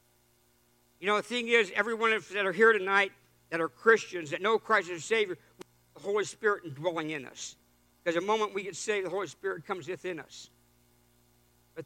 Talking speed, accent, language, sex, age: 200 wpm, American, English, male, 60-79